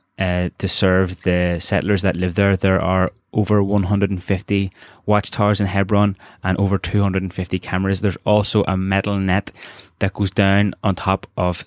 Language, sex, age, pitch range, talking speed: English, male, 20-39, 95-100 Hz, 155 wpm